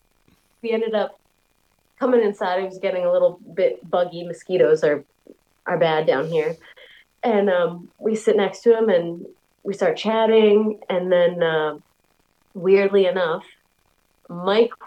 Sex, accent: female, American